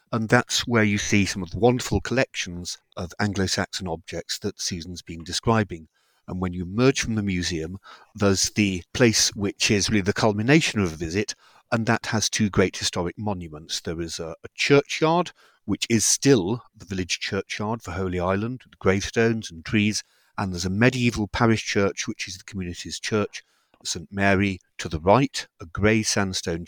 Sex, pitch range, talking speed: male, 90-115 Hz, 180 wpm